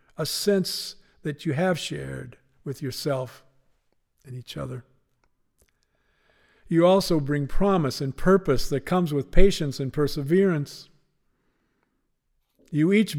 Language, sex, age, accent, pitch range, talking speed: English, male, 50-69, American, 130-160 Hz, 115 wpm